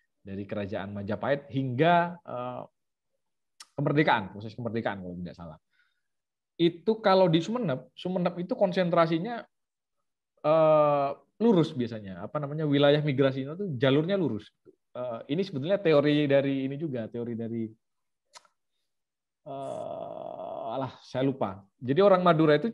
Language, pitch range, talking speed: Indonesian, 120-170 Hz, 120 wpm